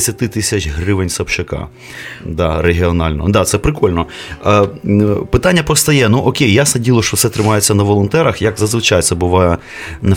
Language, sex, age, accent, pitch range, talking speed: Ukrainian, male, 30-49, native, 95-125 Hz, 150 wpm